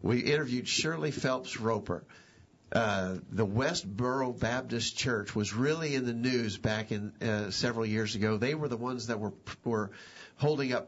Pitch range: 110-130 Hz